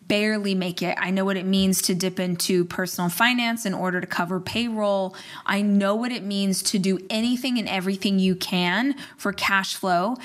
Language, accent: English, American